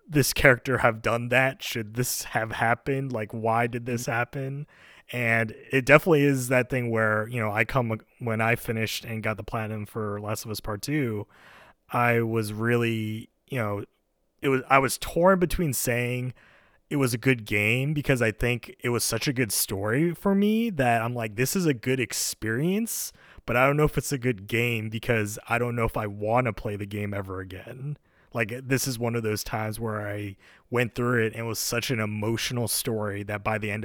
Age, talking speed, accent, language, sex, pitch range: 20-39, 210 wpm, American, English, male, 105-130 Hz